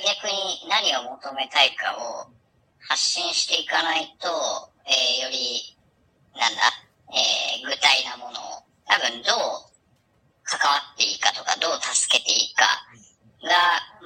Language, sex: Japanese, male